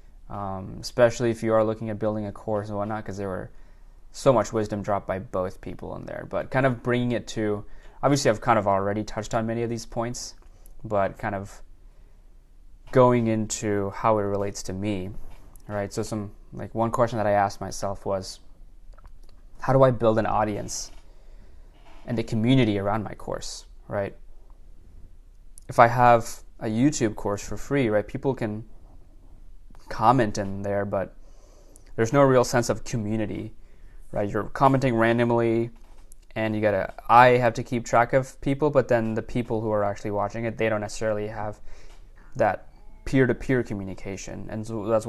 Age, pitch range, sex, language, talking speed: 20-39, 100-115 Hz, male, English, 170 wpm